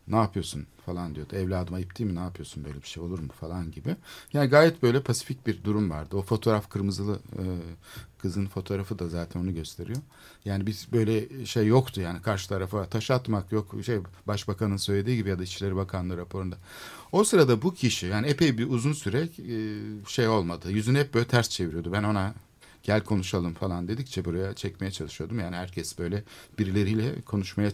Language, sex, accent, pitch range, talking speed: Turkish, male, native, 90-125 Hz, 175 wpm